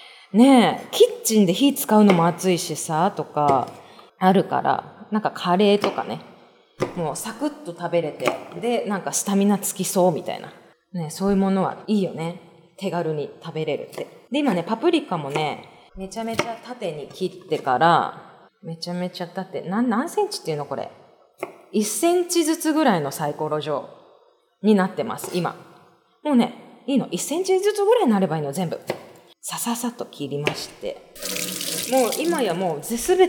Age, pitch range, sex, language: 20-39, 180-255 Hz, female, Japanese